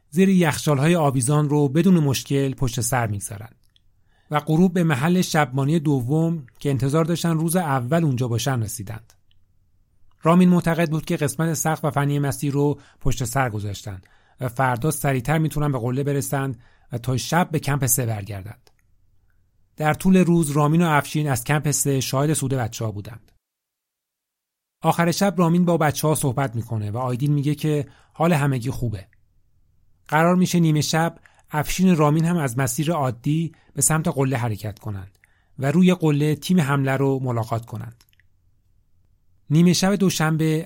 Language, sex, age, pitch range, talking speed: Persian, male, 40-59, 110-155 Hz, 155 wpm